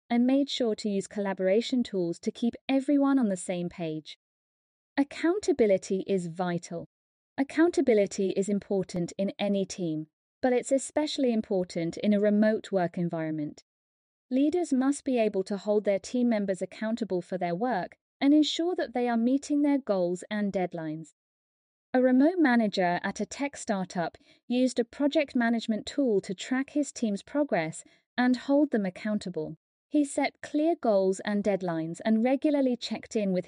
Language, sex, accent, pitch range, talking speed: English, female, British, 190-270 Hz, 155 wpm